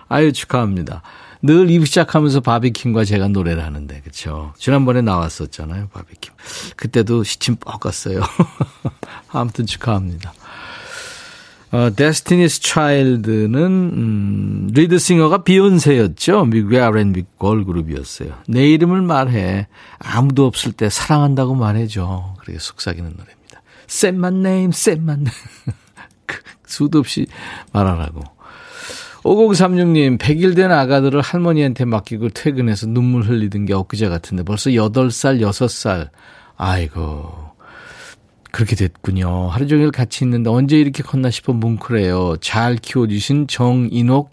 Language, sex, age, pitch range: Korean, male, 50-69, 100-145 Hz